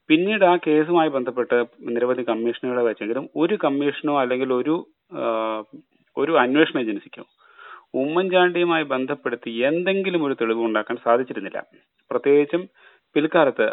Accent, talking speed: native, 100 wpm